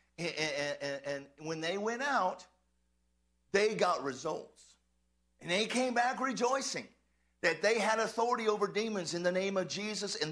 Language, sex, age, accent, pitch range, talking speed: English, male, 50-69, American, 140-225 Hz, 155 wpm